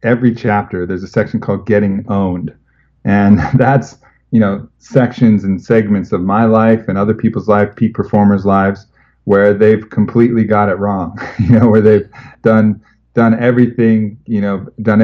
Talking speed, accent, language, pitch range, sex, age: 165 wpm, American, English, 95-110 Hz, male, 40-59